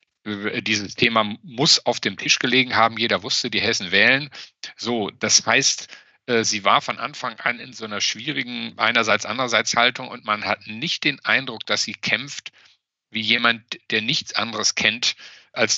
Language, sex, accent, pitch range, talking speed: German, male, German, 105-125 Hz, 160 wpm